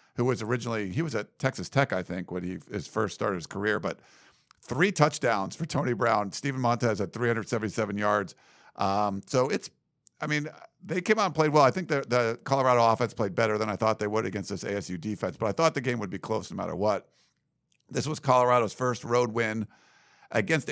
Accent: American